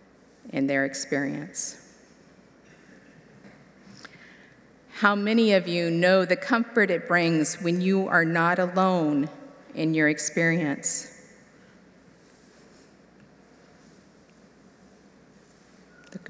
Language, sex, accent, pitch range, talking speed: English, female, American, 170-215 Hz, 75 wpm